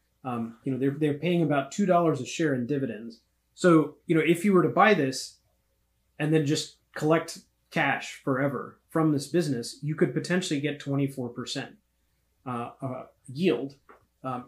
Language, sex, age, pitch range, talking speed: English, male, 30-49, 130-160 Hz, 160 wpm